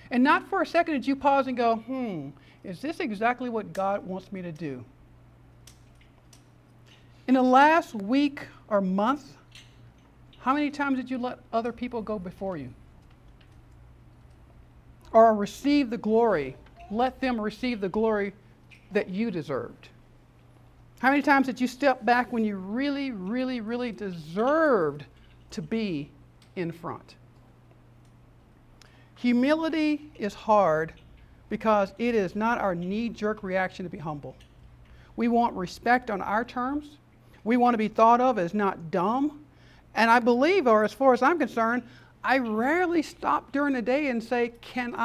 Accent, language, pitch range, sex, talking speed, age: American, English, 190-270 Hz, male, 150 wpm, 50-69